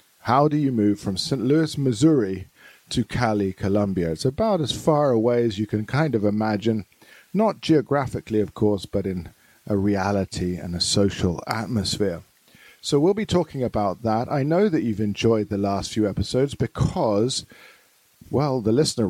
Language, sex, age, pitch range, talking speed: English, male, 50-69, 105-130 Hz, 165 wpm